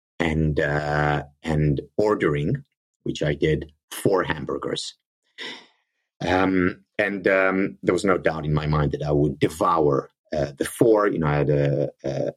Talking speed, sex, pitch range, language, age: 155 wpm, male, 75-120 Hz, English, 30-49